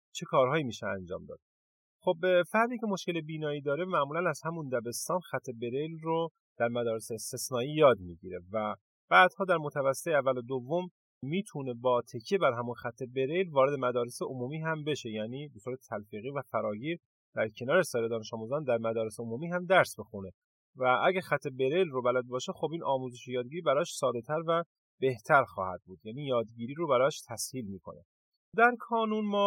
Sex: male